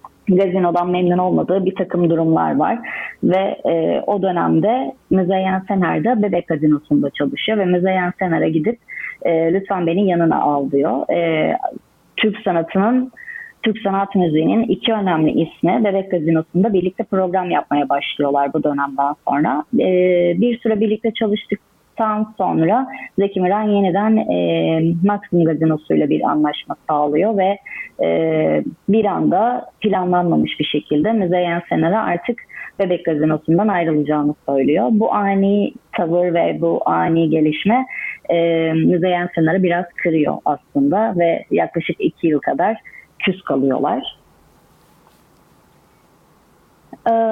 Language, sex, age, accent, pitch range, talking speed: Turkish, female, 30-49, native, 155-205 Hz, 120 wpm